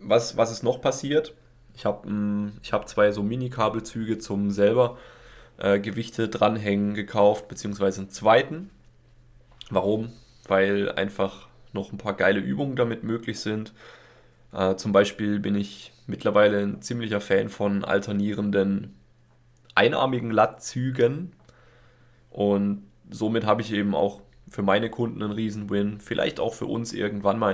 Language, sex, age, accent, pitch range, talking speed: German, male, 20-39, German, 100-120 Hz, 135 wpm